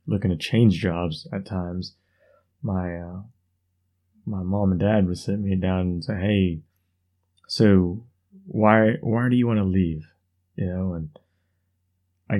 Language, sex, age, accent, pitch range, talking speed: English, male, 20-39, American, 90-105 Hz, 150 wpm